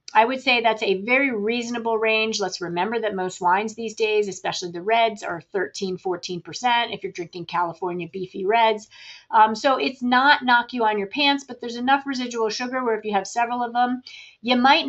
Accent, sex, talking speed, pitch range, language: American, female, 200 wpm, 195-250 Hz, English